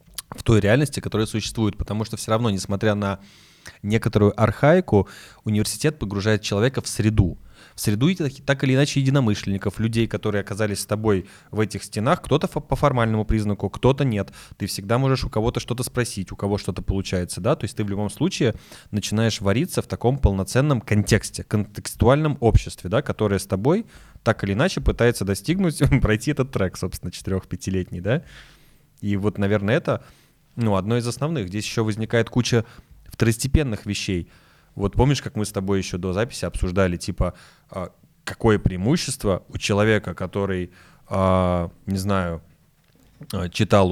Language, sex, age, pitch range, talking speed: Russian, male, 20-39, 95-125 Hz, 155 wpm